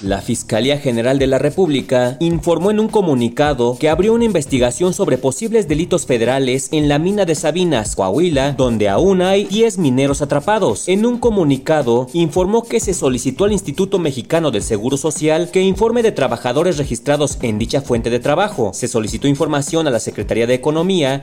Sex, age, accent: male, 40-59, Mexican